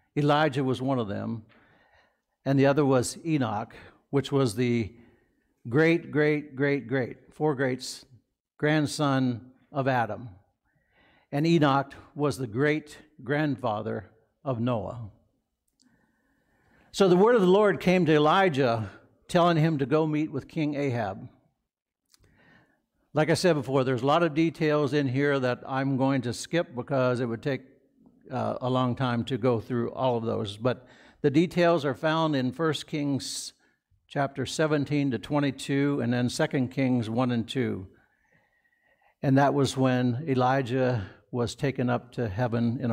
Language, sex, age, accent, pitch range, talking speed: English, male, 60-79, American, 125-155 Hz, 150 wpm